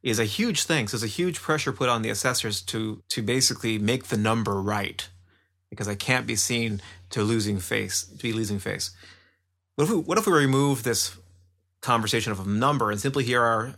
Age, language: 30-49, English